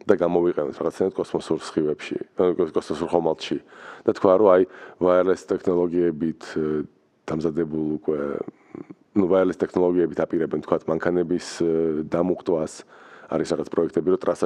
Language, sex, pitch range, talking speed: English, male, 80-95 Hz, 65 wpm